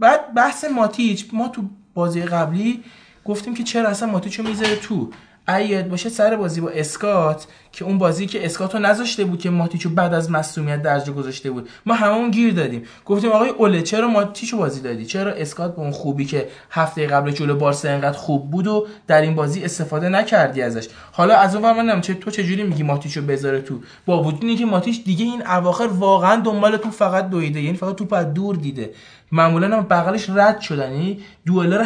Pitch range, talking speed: 145-205 Hz, 180 wpm